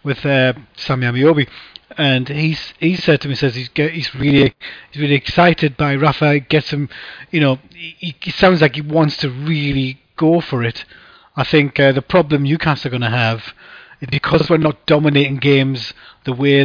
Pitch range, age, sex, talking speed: 135-165 Hz, 30-49, male, 190 wpm